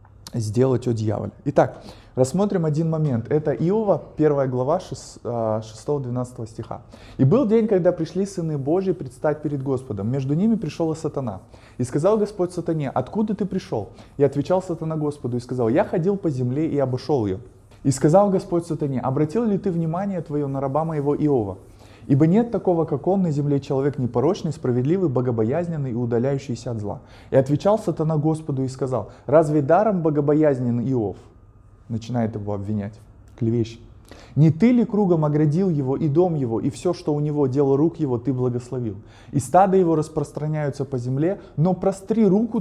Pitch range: 120-170 Hz